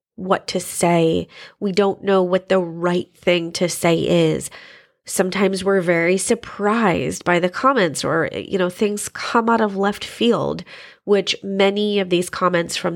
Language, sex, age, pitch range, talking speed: English, female, 20-39, 175-210 Hz, 160 wpm